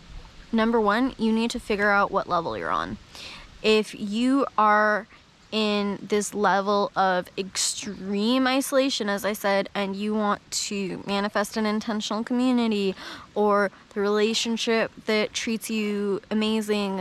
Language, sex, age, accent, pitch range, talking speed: English, female, 10-29, American, 200-230 Hz, 135 wpm